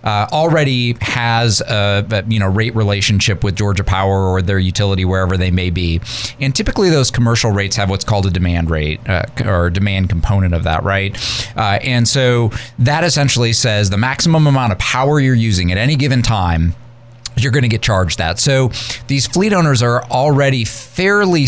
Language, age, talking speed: English, 30-49, 185 wpm